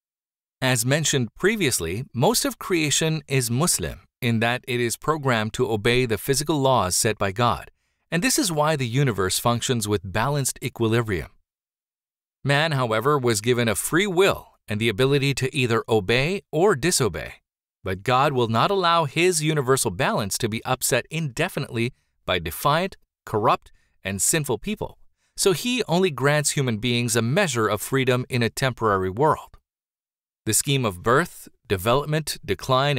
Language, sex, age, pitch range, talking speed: English, male, 40-59, 110-145 Hz, 155 wpm